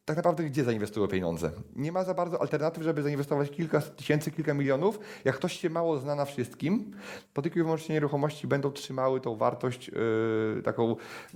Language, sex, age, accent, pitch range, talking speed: Polish, male, 30-49, native, 130-160 Hz, 175 wpm